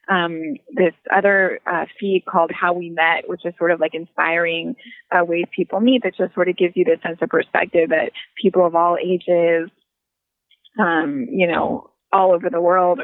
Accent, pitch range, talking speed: American, 175-205 Hz, 190 wpm